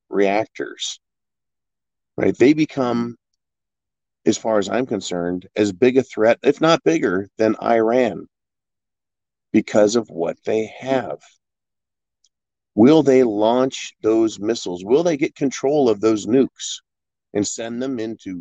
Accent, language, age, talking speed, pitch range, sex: American, English, 40-59, 125 wpm, 100-125 Hz, male